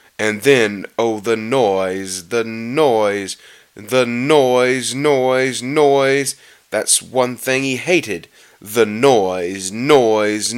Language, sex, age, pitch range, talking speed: English, male, 20-39, 105-125 Hz, 110 wpm